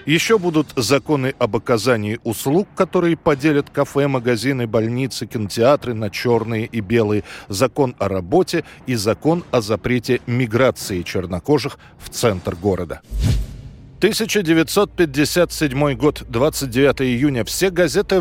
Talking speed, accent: 110 wpm, native